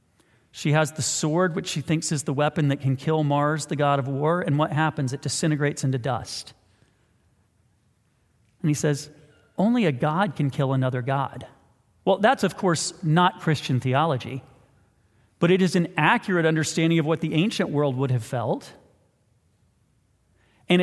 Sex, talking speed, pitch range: male, 165 wpm, 135-180 Hz